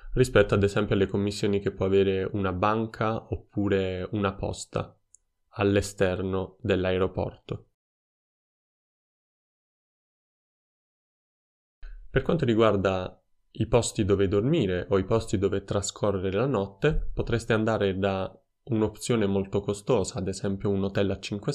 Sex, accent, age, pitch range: male, native, 20-39, 95-110 Hz